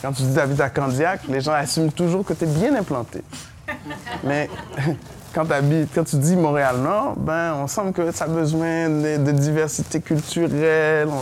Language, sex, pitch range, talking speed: English, male, 120-155 Hz, 175 wpm